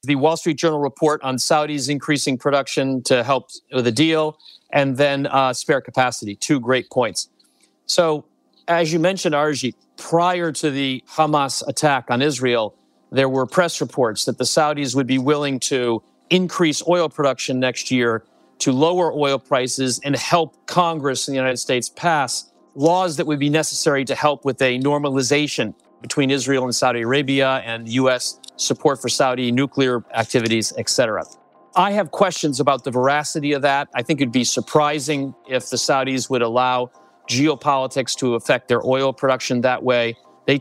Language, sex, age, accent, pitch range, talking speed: English, male, 40-59, American, 125-150 Hz, 165 wpm